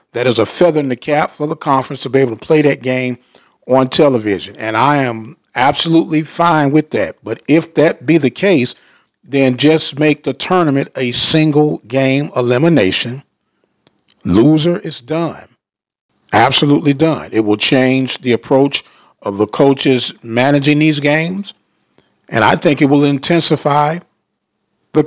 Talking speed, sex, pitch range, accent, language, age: 155 wpm, male, 130-160 Hz, American, English, 40-59